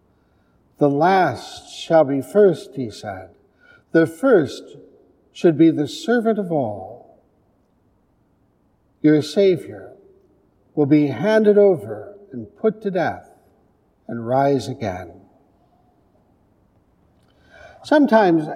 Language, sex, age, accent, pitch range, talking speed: English, male, 60-79, American, 145-200 Hz, 95 wpm